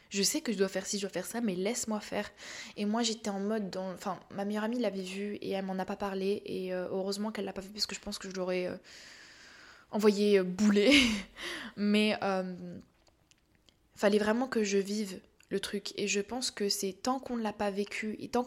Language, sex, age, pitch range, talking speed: French, female, 20-39, 190-215 Hz, 220 wpm